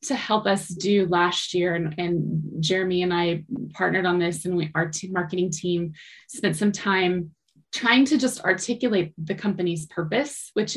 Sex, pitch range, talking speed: female, 175-215 Hz, 175 wpm